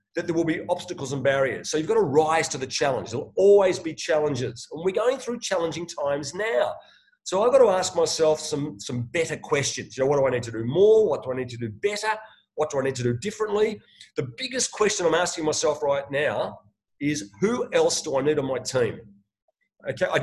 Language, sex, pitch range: English, male, 140-215 Hz